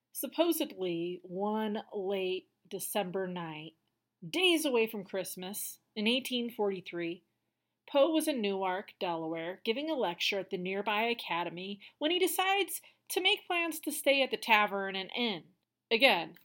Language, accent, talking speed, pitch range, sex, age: English, American, 135 wpm, 195-275 Hz, female, 30-49